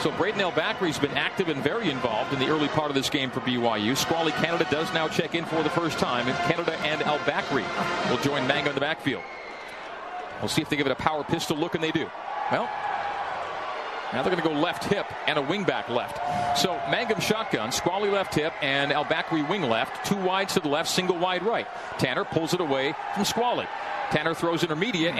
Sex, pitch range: male, 145-185 Hz